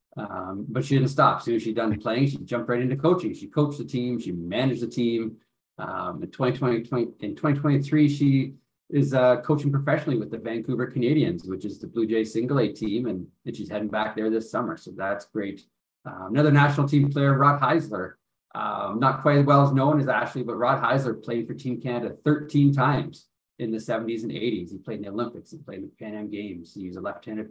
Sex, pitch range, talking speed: male, 105-130 Hz, 220 wpm